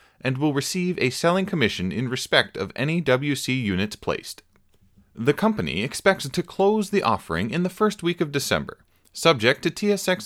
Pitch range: 125-180 Hz